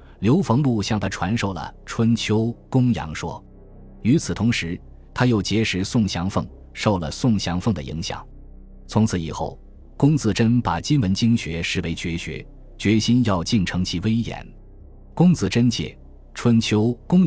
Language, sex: Chinese, male